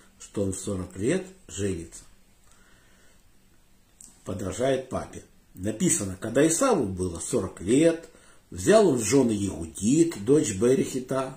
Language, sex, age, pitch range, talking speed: Russian, male, 50-69, 100-170 Hz, 105 wpm